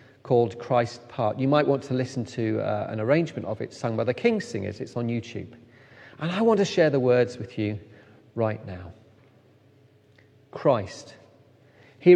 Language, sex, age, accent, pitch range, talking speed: English, male, 40-59, British, 120-145 Hz, 175 wpm